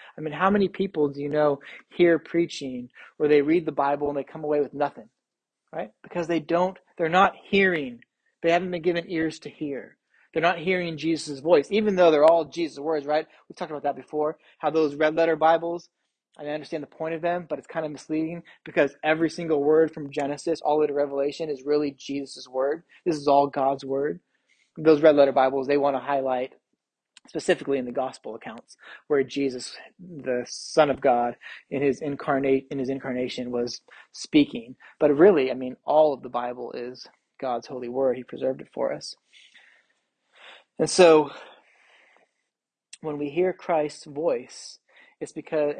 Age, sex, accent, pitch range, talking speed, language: 20-39, male, American, 140-165 Hz, 180 wpm, English